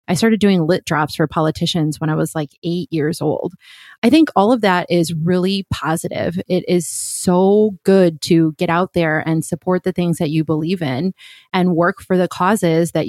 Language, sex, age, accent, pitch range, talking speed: English, female, 20-39, American, 170-195 Hz, 200 wpm